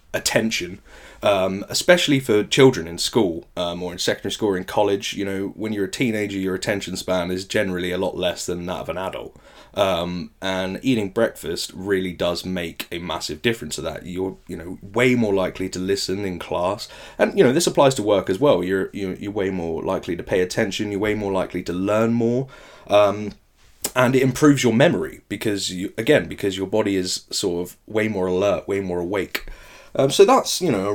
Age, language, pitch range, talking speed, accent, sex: 20-39, English, 90-110 Hz, 205 wpm, British, male